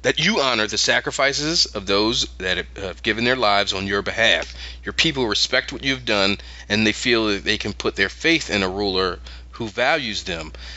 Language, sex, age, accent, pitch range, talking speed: English, male, 30-49, American, 85-140 Hz, 200 wpm